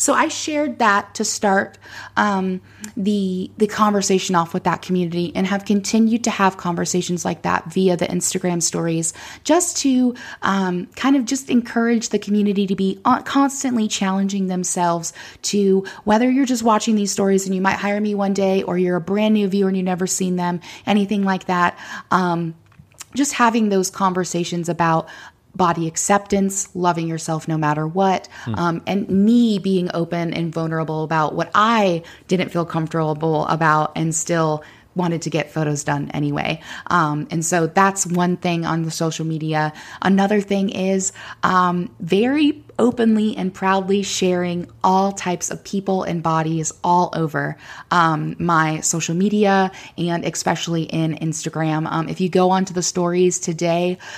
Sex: female